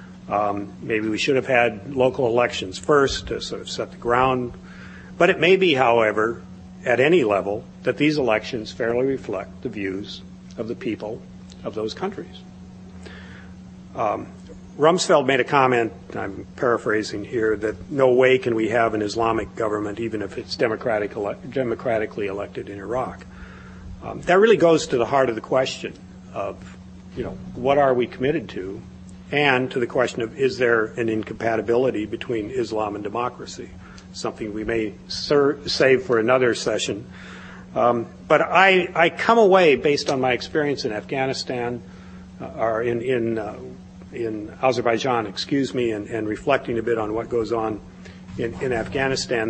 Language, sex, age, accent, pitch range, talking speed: English, male, 50-69, American, 95-130 Hz, 165 wpm